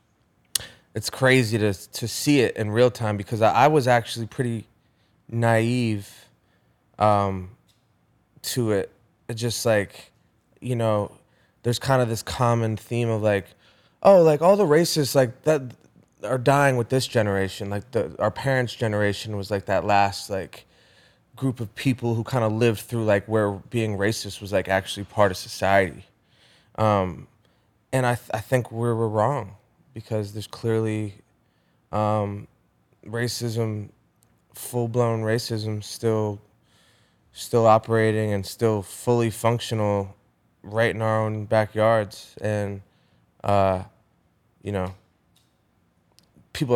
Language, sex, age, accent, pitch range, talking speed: English, male, 20-39, American, 100-120 Hz, 130 wpm